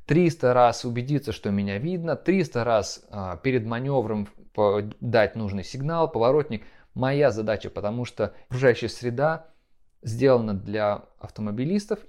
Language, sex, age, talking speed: Russian, male, 20-39, 115 wpm